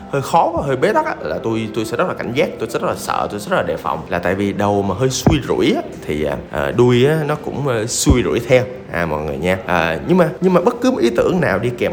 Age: 20-39